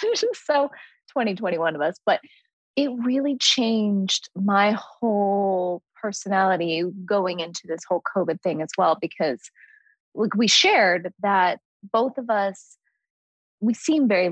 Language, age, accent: English, 20-39, American